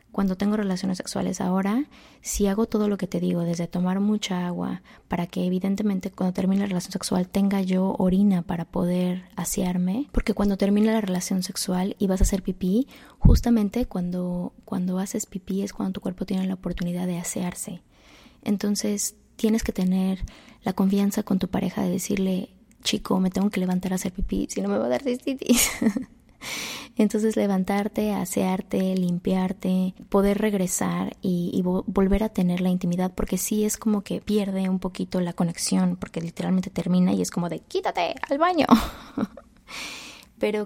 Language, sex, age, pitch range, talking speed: Spanish, female, 20-39, 185-215 Hz, 170 wpm